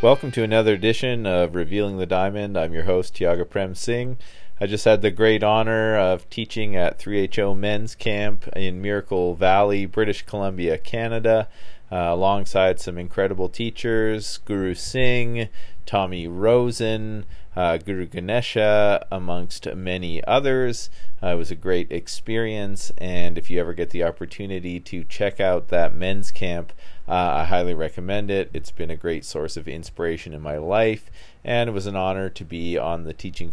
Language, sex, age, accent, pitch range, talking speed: English, male, 40-59, American, 90-110 Hz, 165 wpm